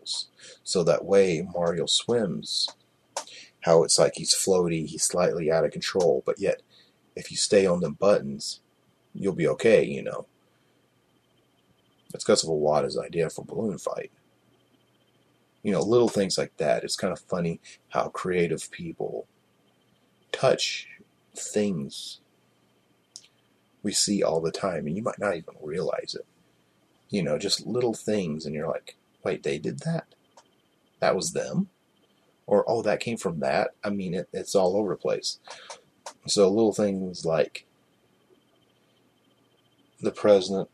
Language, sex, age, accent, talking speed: English, male, 30-49, American, 145 wpm